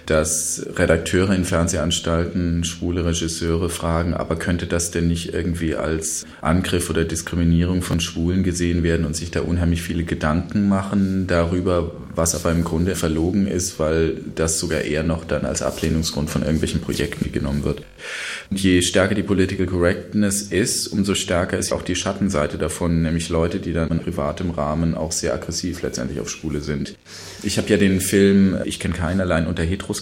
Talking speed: 170 wpm